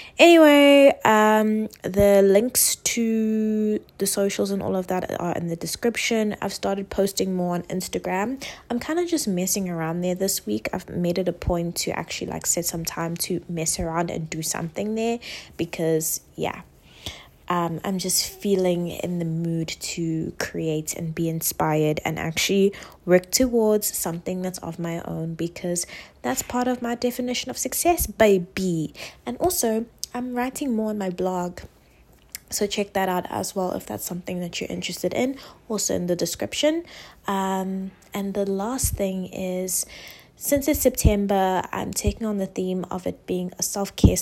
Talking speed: 170 wpm